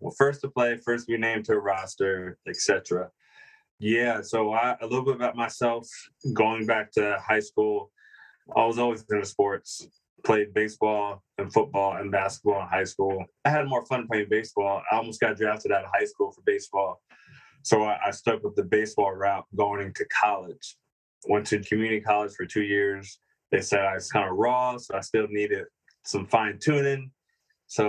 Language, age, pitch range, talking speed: English, 20-39, 105-125 Hz, 185 wpm